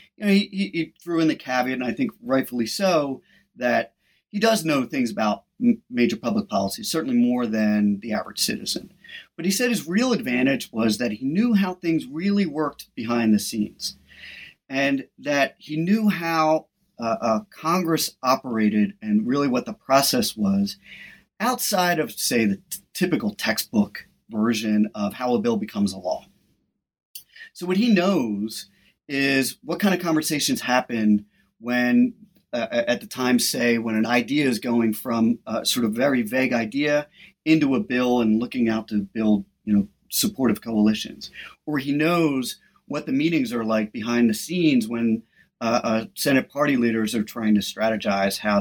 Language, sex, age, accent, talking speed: English, male, 40-59, American, 170 wpm